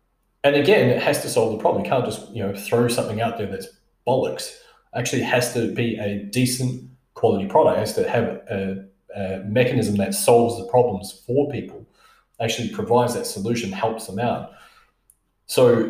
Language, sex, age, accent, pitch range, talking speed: English, male, 20-39, Australian, 100-125 Hz, 180 wpm